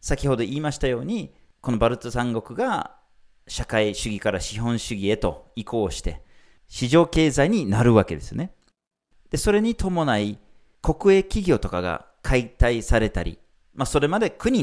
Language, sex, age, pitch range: Japanese, male, 40-59, 100-155 Hz